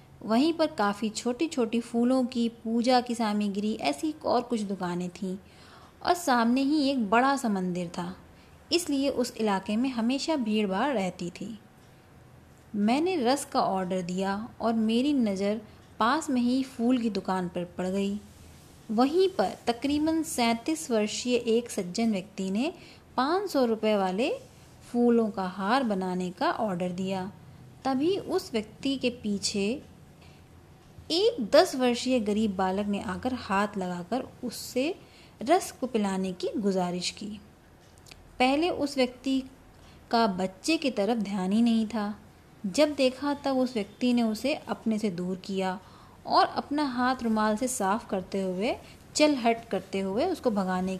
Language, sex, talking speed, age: Hindi, female, 145 wpm, 20-39